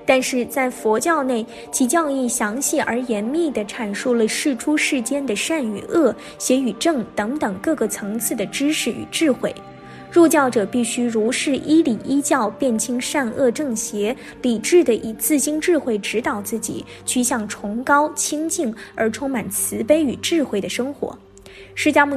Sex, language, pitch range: female, Chinese, 225-290 Hz